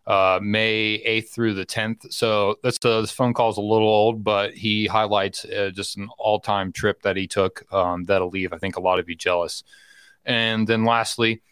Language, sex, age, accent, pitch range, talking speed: English, male, 30-49, American, 100-115 Hz, 210 wpm